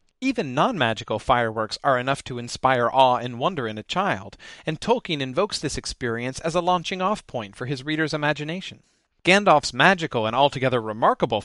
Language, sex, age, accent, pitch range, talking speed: English, male, 40-59, American, 125-180 Hz, 160 wpm